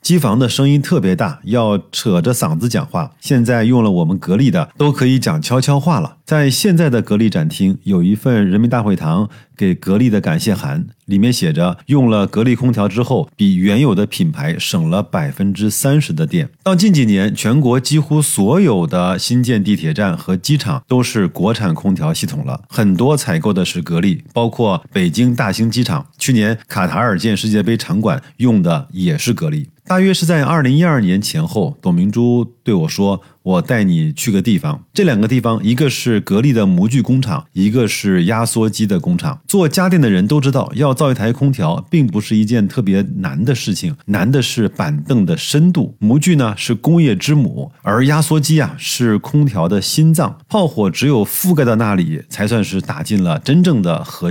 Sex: male